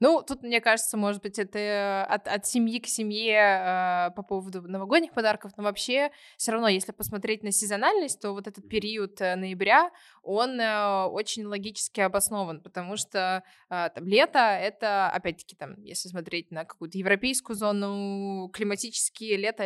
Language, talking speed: Russian, 140 wpm